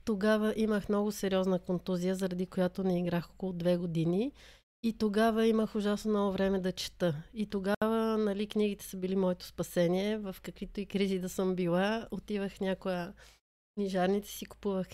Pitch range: 190-220 Hz